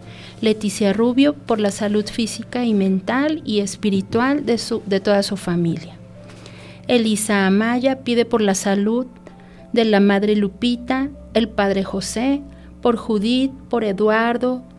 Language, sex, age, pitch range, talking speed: Spanish, female, 40-59, 190-240 Hz, 135 wpm